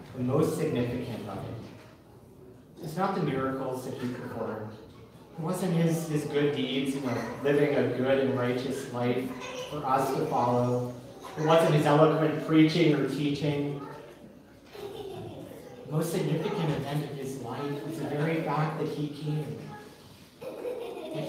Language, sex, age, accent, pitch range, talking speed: English, male, 40-59, American, 140-160 Hz, 145 wpm